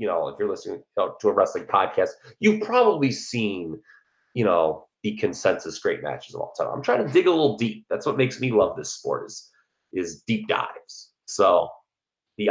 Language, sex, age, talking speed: English, male, 30-49, 195 wpm